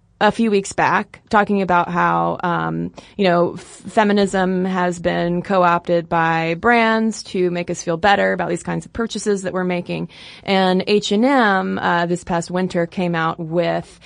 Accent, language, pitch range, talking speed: American, English, 175-225 Hz, 165 wpm